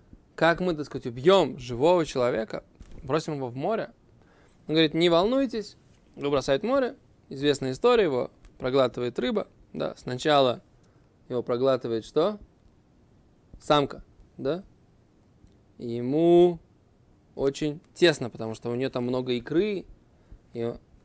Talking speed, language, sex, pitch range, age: 115 wpm, Russian, male, 120-160 Hz, 20-39